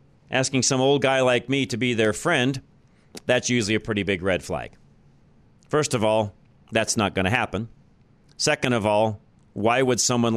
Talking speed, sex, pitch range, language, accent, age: 180 wpm, male, 100-130 Hz, English, American, 40-59